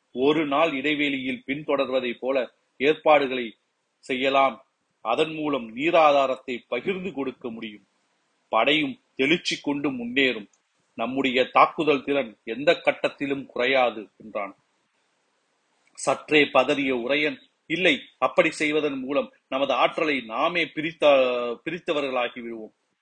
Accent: native